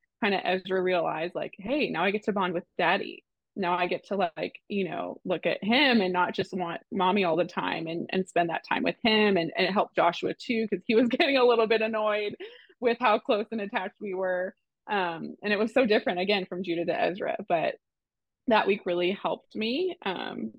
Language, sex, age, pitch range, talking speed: English, female, 20-39, 180-225 Hz, 225 wpm